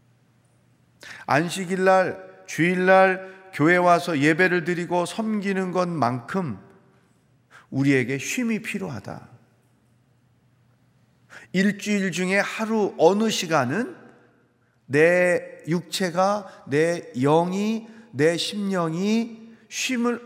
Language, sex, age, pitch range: Korean, male, 40-59, 135-190 Hz